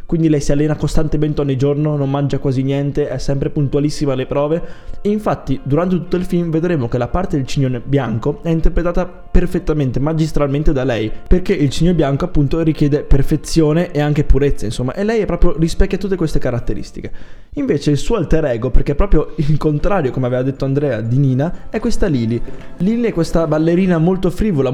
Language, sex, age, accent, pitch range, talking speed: Italian, male, 20-39, native, 130-170 Hz, 190 wpm